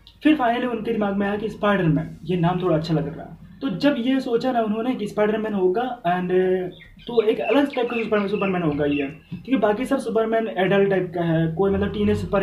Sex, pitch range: male, 175-220 Hz